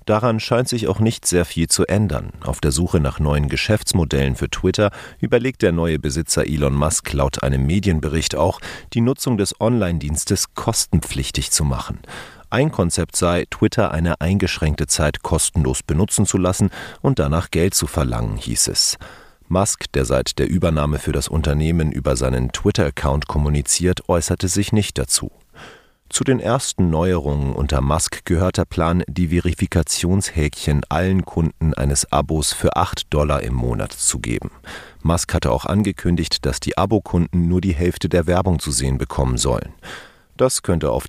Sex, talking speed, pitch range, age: male, 160 wpm, 75-95 Hz, 40-59